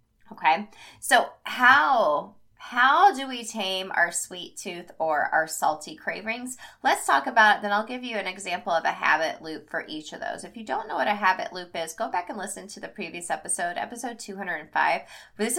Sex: female